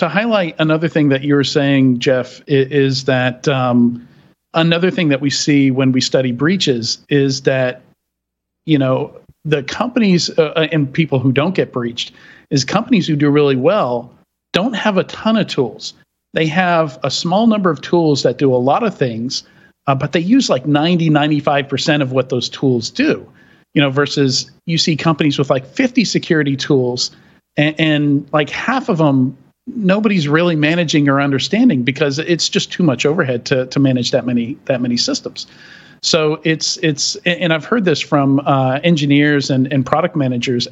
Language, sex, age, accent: English, male, 40-59, American